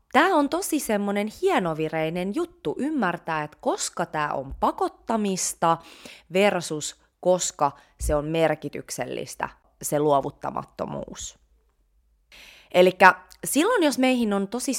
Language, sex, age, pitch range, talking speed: Finnish, female, 20-39, 150-250 Hz, 100 wpm